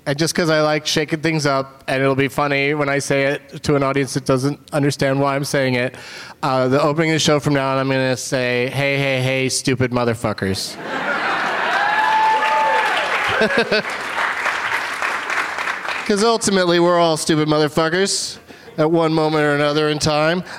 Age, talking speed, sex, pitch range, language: 30-49, 165 wpm, male, 130-155 Hz, English